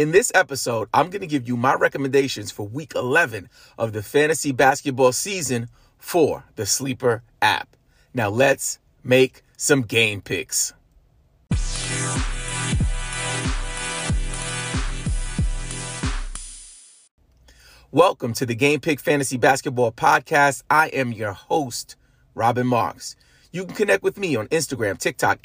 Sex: male